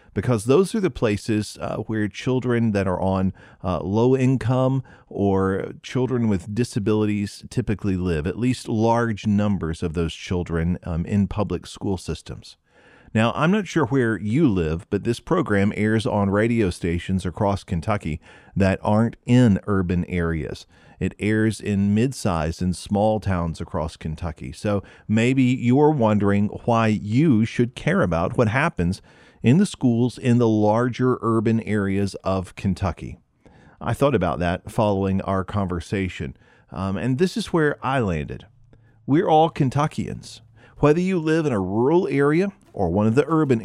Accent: American